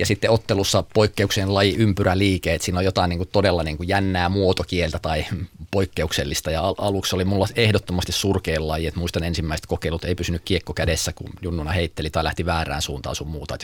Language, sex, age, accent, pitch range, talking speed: Finnish, male, 30-49, native, 85-100 Hz, 190 wpm